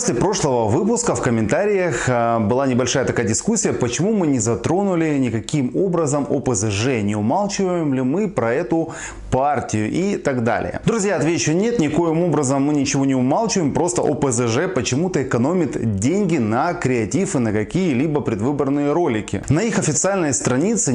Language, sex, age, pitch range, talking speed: Russian, male, 20-39, 120-165 Hz, 145 wpm